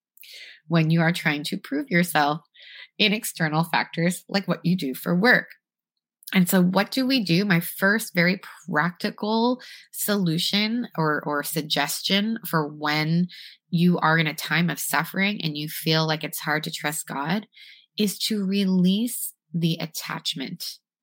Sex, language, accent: female, English, American